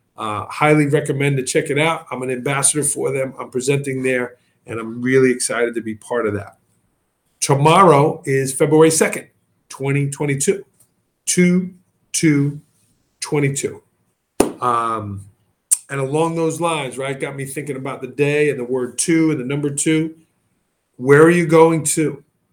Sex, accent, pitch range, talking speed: male, American, 125-160 Hz, 150 wpm